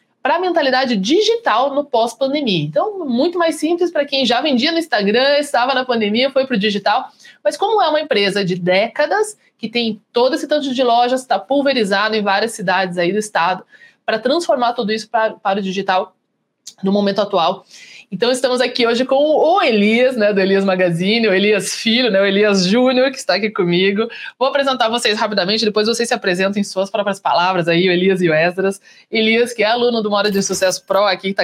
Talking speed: 205 wpm